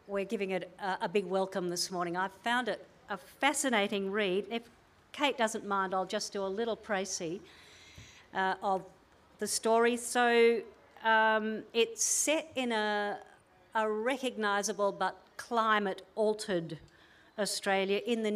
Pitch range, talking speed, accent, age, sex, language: 190-230 Hz, 135 wpm, Australian, 50-69, female, English